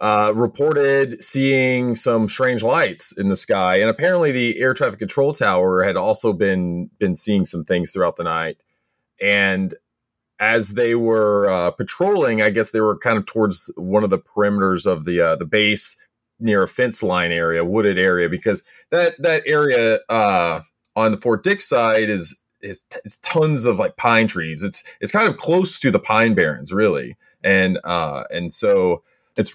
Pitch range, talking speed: 100-140 Hz, 180 wpm